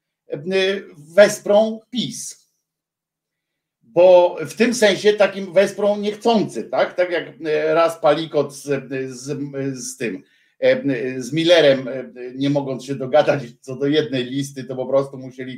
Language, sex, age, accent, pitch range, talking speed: Polish, male, 50-69, native, 135-195 Hz, 125 wpm